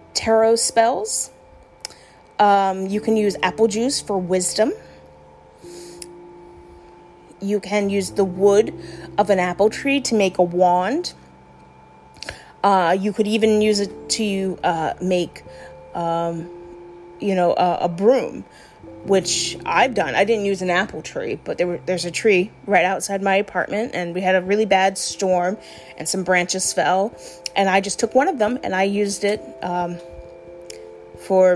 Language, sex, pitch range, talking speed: English, female, 175-210 Hz, 150 wpm